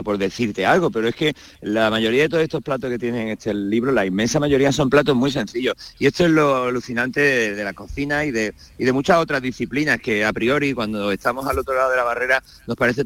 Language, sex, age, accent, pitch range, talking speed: Spanish, male, 40-59, Spanish, 110-145 Hz, 235 wpm